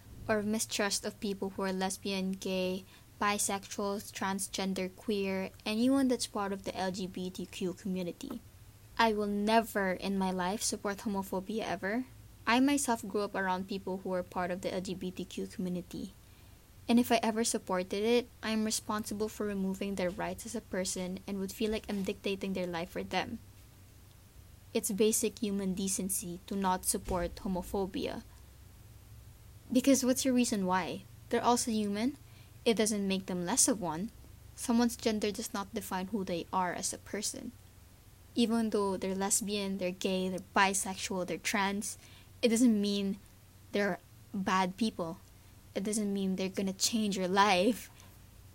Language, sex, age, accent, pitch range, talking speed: English, female, 20-39, Filipino, 180-220 Hz, 155 wpm